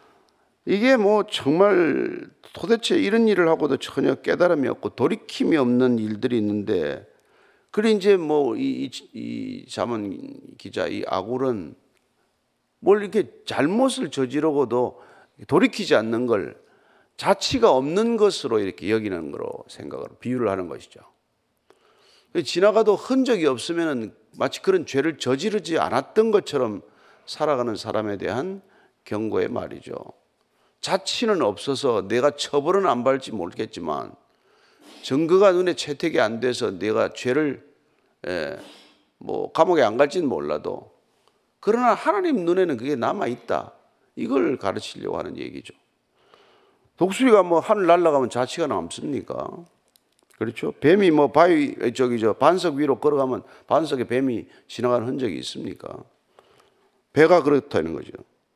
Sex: male